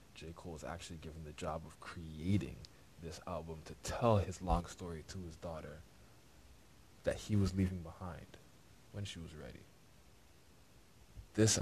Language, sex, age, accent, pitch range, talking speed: English, male, 20-39, American, 80-95 Hz, 150 wpm